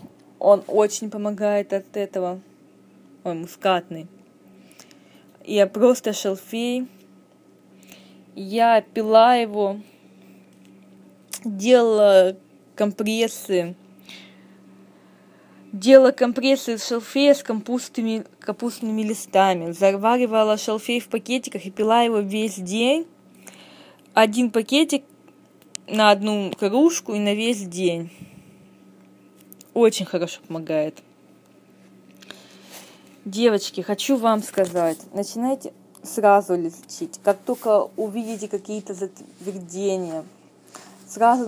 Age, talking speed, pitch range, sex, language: 20-39, 80 wpm, 180-230 Hz, female, Russian